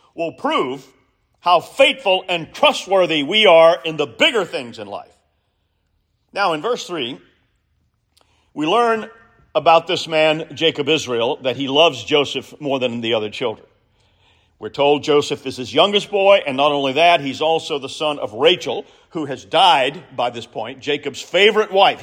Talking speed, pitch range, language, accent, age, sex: 165 wpm, 145-215 Hz, English, American, 50-69, male